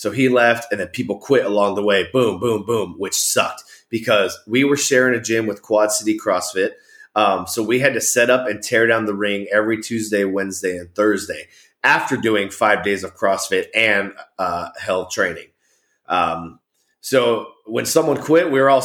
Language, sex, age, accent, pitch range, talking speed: English, male, 30-49, American, 100-140 Hz, 190 wpm